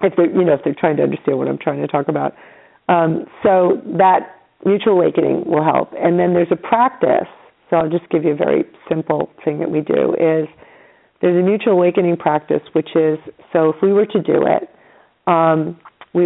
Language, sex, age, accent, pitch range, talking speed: English, female, 40-59, American, 160-195 Hz, 205 wpm